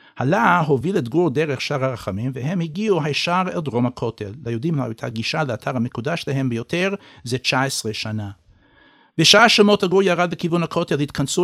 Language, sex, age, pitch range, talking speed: English, male, 60-79, 120-165 Hz, 165 wpm